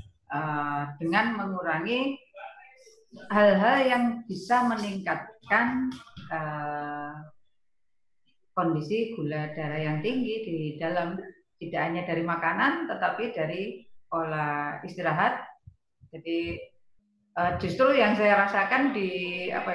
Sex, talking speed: female, 95 wpm